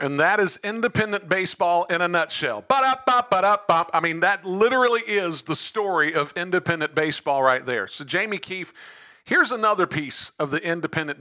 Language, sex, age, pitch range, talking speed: English, male, 50-69, 145-190 Hz, 180 wpm